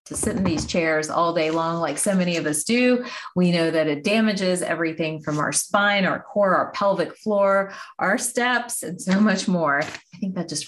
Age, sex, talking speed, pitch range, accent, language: 30-49, female, 215 wpm, 165-215 Hz, American, English